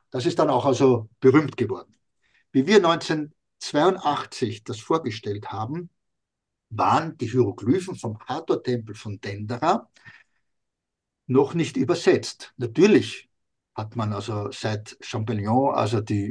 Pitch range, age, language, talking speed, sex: 115-155 Hz, 60-79, German, 115 wpm, male